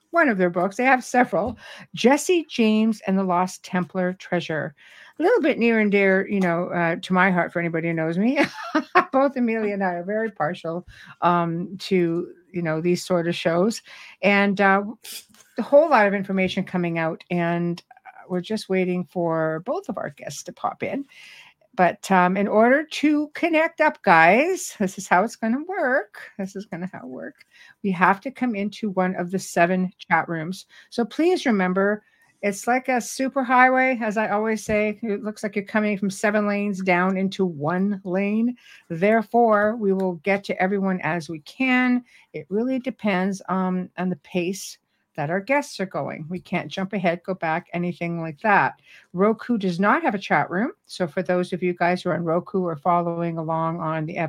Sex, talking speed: female, 190 wpm